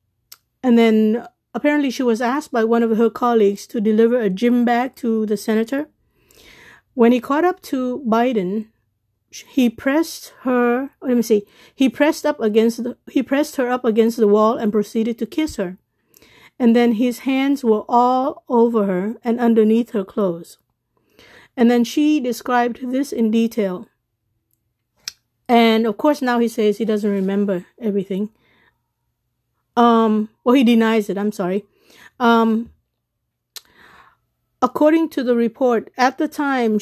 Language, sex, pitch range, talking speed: English, female, 215-255 Hz, 150 wpm